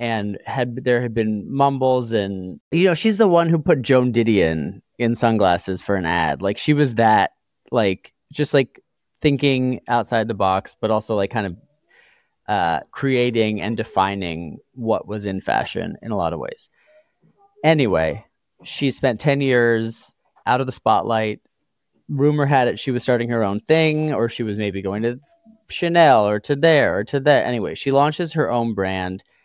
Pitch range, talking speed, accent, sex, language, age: 105-140 Hz, 175 wpm, American, male, English, 30-49